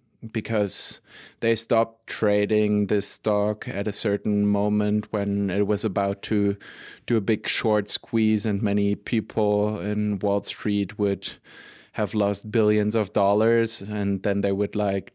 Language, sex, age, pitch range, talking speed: English, male, 20-39, 100-110 Hz, 145 wpm